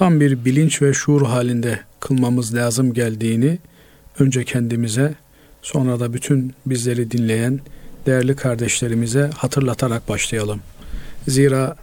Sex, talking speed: male, 105 wpm